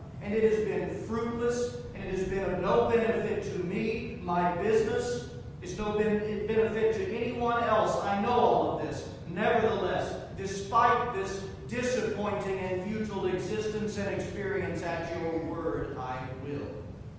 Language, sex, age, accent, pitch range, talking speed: English, male, 40-59, American, 160-210 Hz, 145 wpm